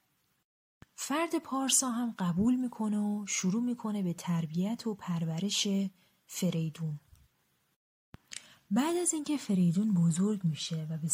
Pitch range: 170-225 Hz